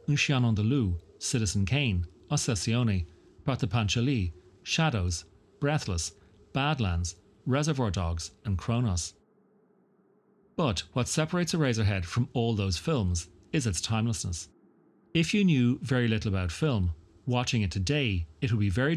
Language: English